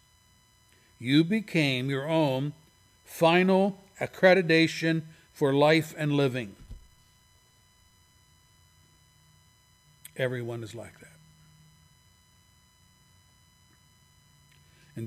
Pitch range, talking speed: 100-145 Hz, 60 wpm